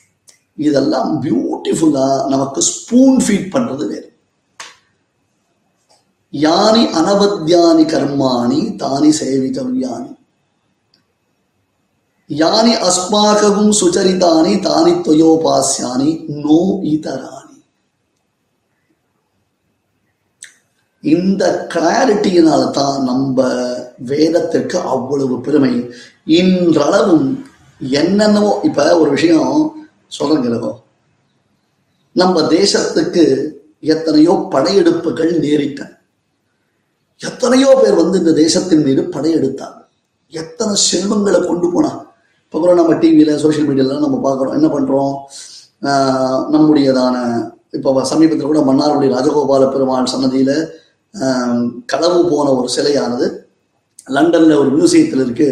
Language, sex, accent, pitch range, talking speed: Tamil, male, native, 135-210 Hz, 70 wpm